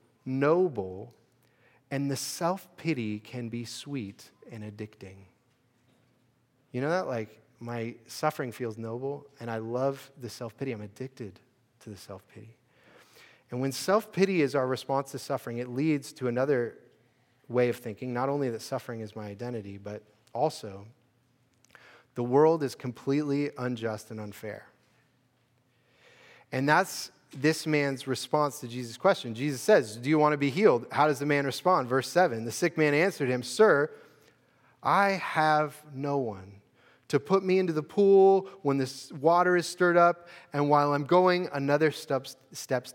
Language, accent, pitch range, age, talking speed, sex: English, American, 120-150 Hz, 30-49, 155 wpm, male